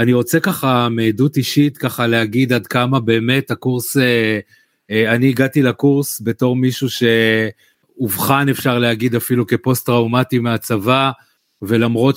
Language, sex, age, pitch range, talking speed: Hebrew, male, 30-49, 120-135 Hz, 120 wpm